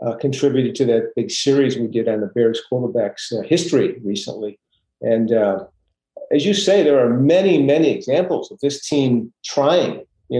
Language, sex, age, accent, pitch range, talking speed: English, male, 50-69, American, 115-145 Hz, 175 wpm